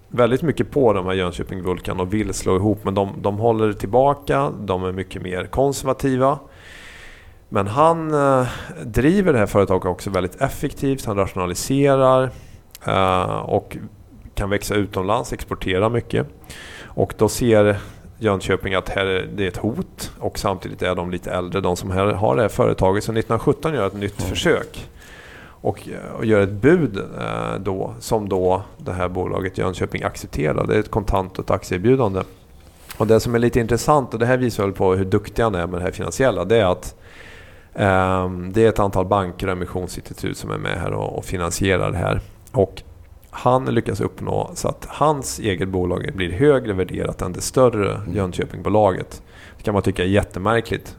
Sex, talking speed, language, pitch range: male, 175 wpm, Swedish, 95-110 Hz